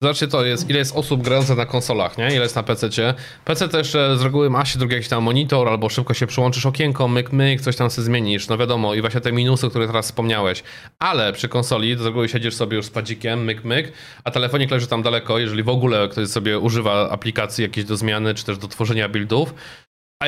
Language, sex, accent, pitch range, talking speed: Polish, male, native, 110-130 Hz, 230 wpm